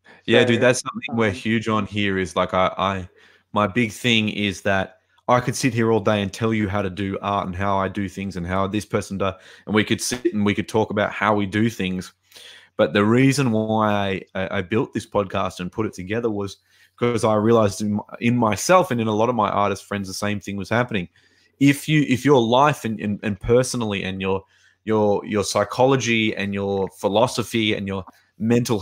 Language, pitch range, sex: English, 100-120 Hz, male